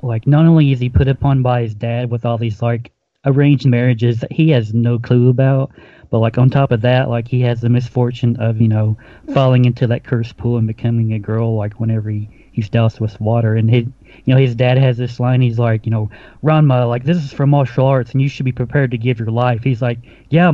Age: 30-49